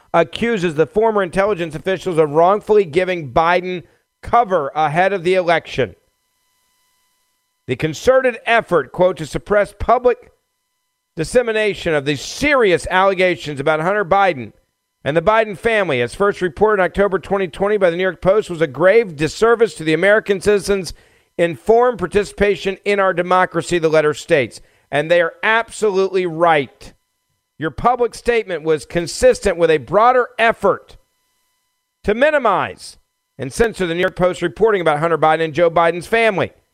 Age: 50-69